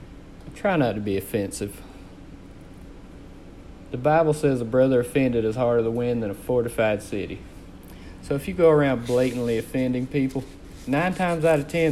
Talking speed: 160 wpm